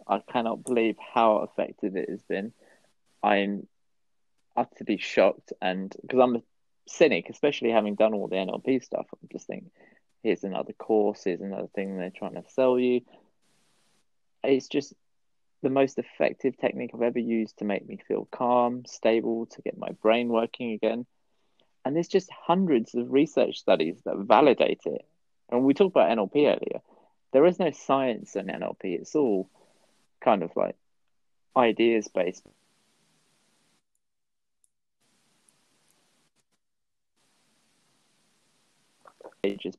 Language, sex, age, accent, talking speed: English, male, 20-39, British, 135 wpm